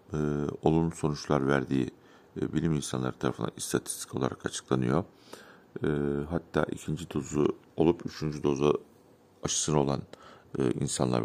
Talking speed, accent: 115 wpm, native